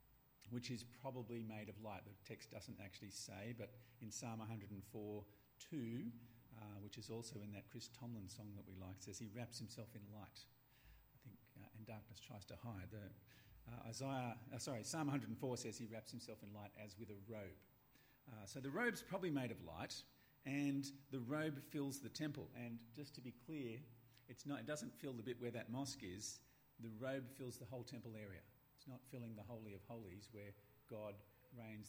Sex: male